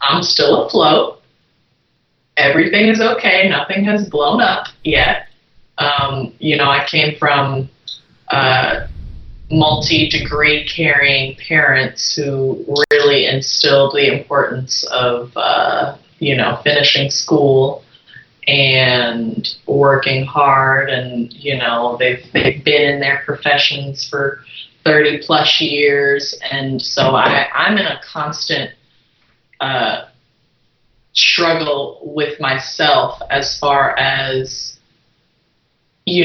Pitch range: 130-145 Hz